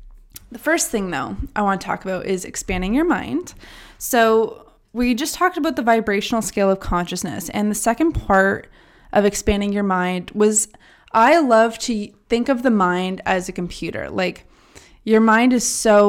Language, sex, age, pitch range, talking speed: English, female, 20-39, 200-250 Hz, 175 wpm